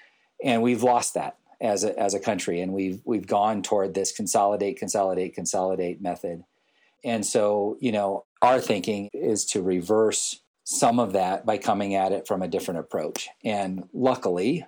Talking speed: 170 wpm